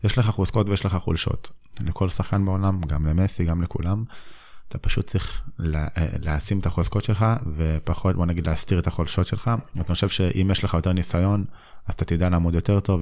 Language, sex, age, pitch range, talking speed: Hebrew, male, 20-39, 85-100 Hz, 185 wpm